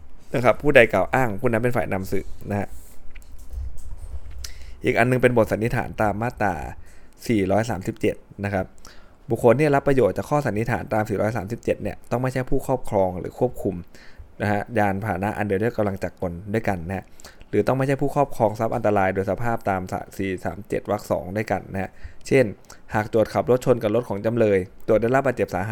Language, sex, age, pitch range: Thai, male, 20-39, 95-115 Hz